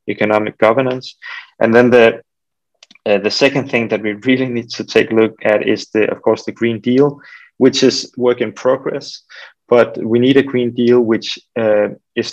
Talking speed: 190 wpm